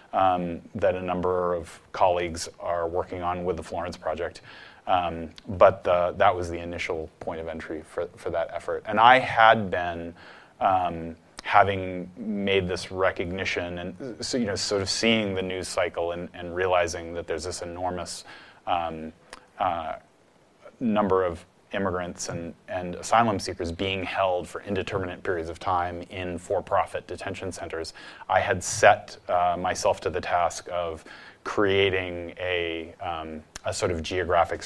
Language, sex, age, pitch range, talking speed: English, male, 30-49, 85-95 Hz, 155 wpm